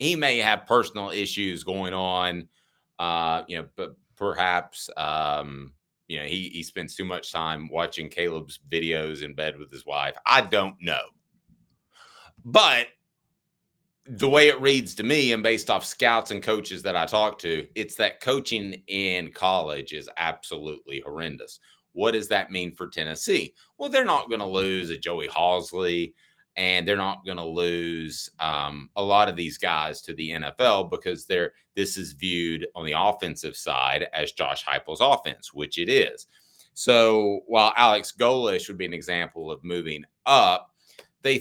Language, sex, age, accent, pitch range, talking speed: English, male, 30-49, American, 85-115 Hz, 165 wpm